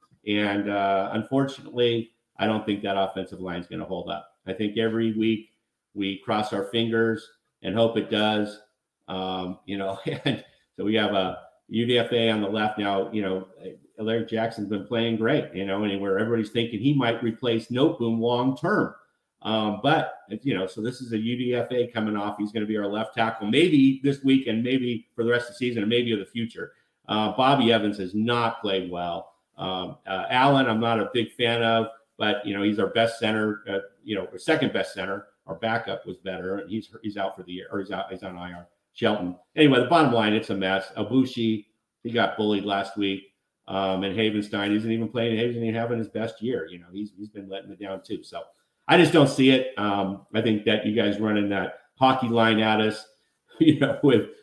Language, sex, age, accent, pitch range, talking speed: English, male, 50-69, American, 100-115 Hz, 215 wpm